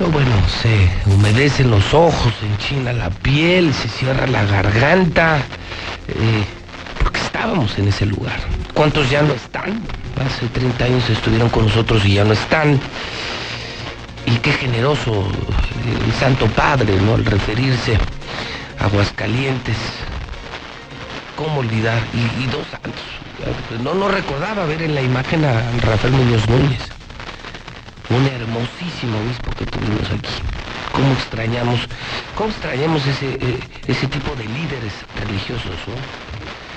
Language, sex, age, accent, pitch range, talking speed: Spanish, male, 50-69, Mexican, 105-130 Hz, 130 wpm